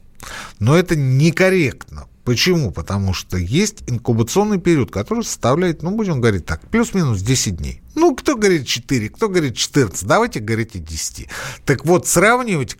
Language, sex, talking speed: Russian, male, 145 wpm